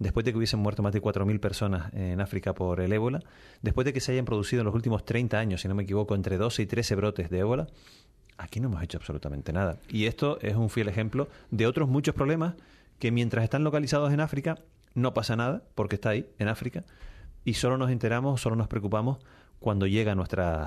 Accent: Argentinian